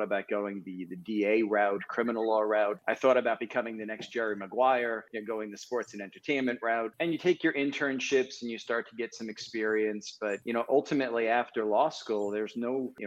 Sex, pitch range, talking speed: male, 105-125 Hz, 215 wpm